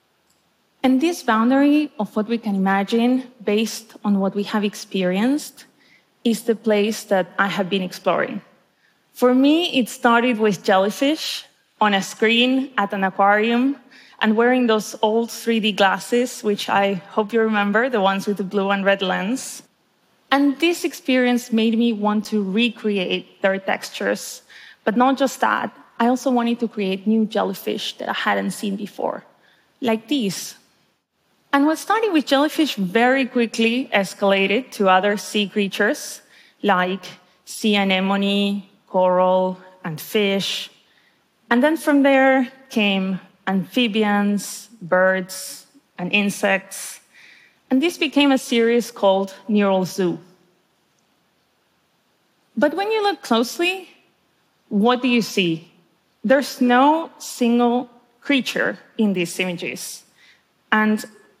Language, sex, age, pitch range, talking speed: Arabic, female, 20-39, 195-255 Hz, 130 wpm